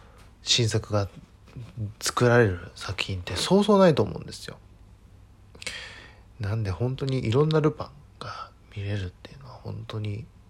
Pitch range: 90-110 Hz